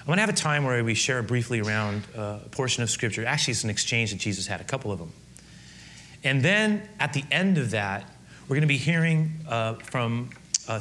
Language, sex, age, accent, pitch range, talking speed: English, male, 30-49, American, 110-130 Hz, 235 wpm